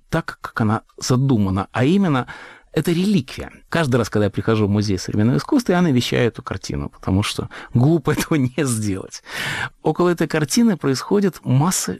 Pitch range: 110-155 Hz